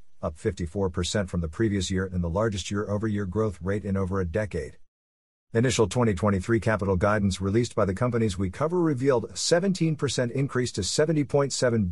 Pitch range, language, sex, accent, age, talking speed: 100-125 Hz, English, male, American, 50-69, 160 wpm